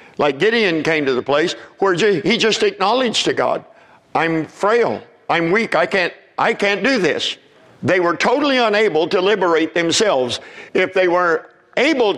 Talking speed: 165 wpm